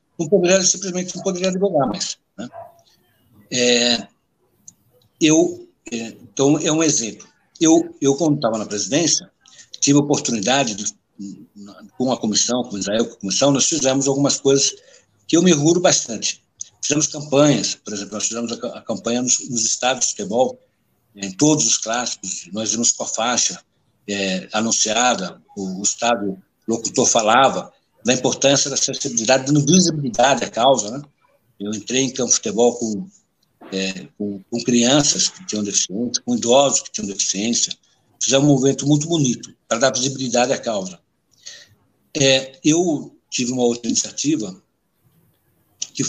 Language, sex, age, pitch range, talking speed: Portuguese, male, 60-79, 115-155 Hz, 155 wpm